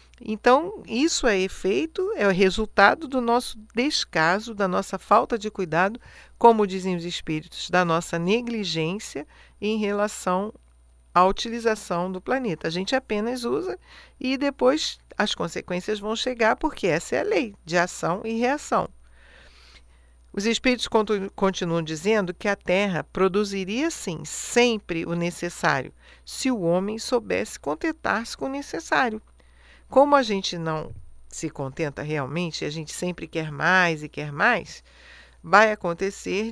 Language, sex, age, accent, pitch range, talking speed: Portuguese, female, 50-69, Brazilian, 170-230 Hz, 140 wpm